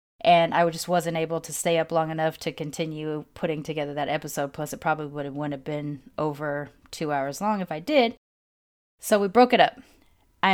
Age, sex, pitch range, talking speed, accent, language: 30-49, female, 160-195 Hz, 200 wpm, American, English